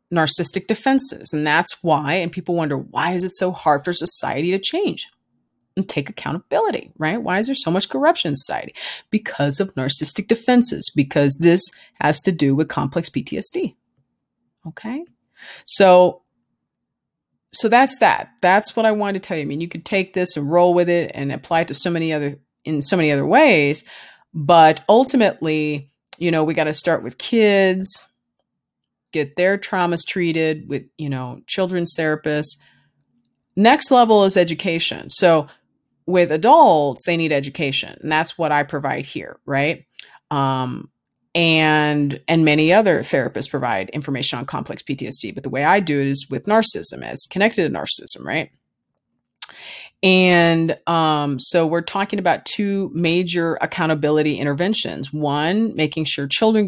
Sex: female